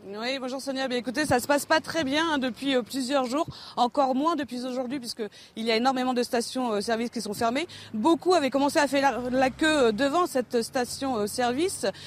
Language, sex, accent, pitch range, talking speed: French, female, French, 230-300 Hz, 190 wpm